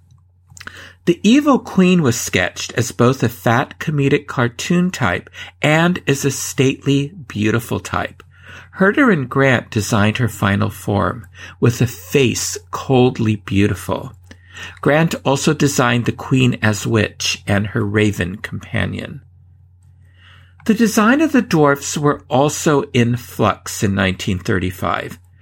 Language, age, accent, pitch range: English, 50-69, American, 100-155 Hz